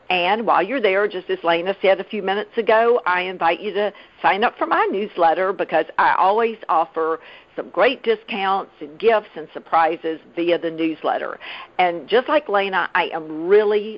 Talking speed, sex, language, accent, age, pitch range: 180 wpm, female, English, American, 50-69, 165-220 Hz